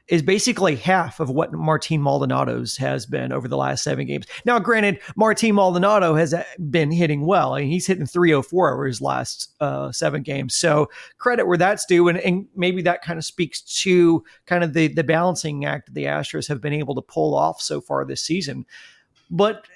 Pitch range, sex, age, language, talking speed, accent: 155-195 Hz, male, 40-59, English, 205 wpm, American